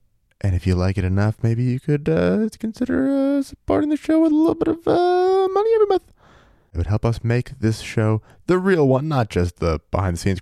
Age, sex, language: 20-39, male, English